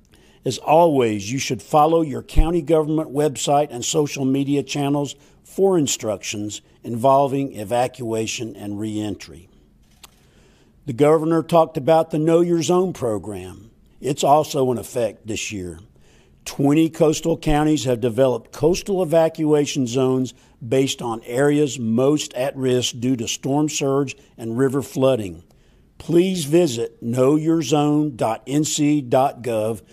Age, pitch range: 50-69, 115-155 Hz